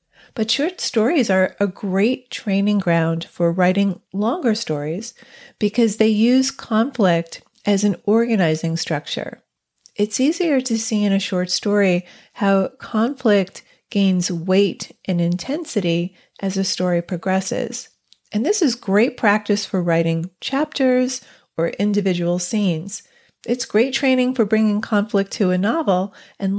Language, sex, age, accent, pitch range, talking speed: English, female, 40-59, American, 180-230 Hz, 135 wpm